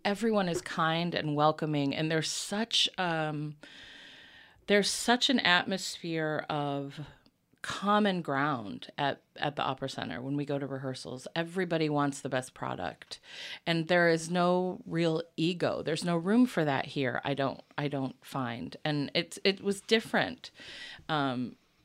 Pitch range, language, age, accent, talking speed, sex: 145-175 Hz, English, 30-49, American, 150 wpm, female